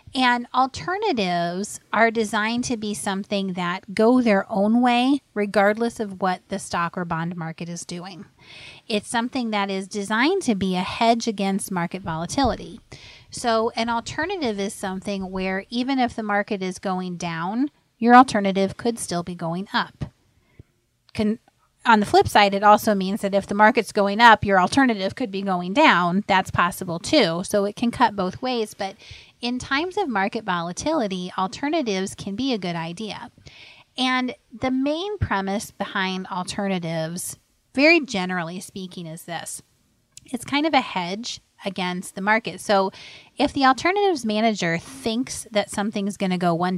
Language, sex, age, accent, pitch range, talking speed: English, female, 30-49, American, 180-235 Hz, 160 wpm